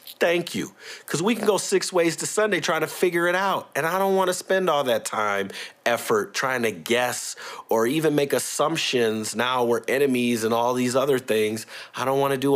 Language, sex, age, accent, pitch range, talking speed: English, male, 30-49, American, 105-150 Hz, 215 wpm